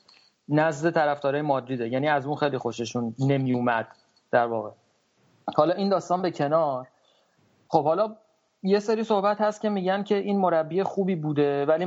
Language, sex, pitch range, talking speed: Persian, male, 140-180 Hz, 150 wpm